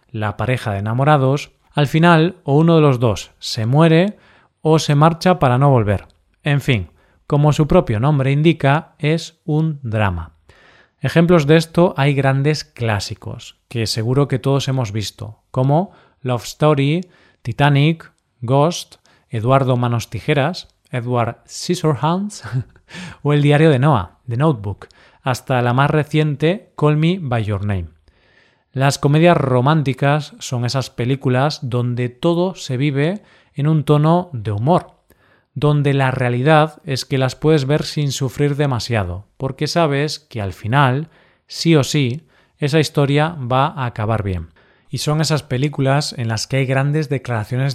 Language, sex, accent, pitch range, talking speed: Spanish, male, Spanish, 120-155 Hz, 145 wpm